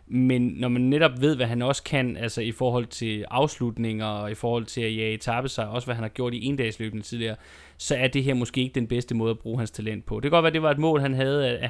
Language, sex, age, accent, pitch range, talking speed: Danish, male, 20-39, native, 115-135 Hz, 290 wpm